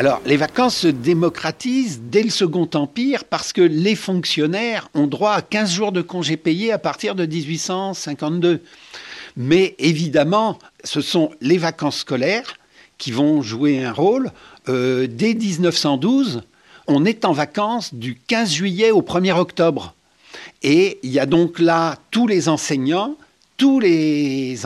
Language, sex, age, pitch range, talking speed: French, male, 60-79, 145-195 Hz, 150 wpm